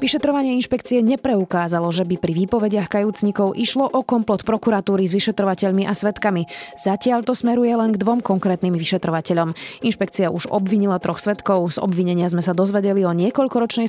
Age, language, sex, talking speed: 20-39, Slovak, female, 155 wpm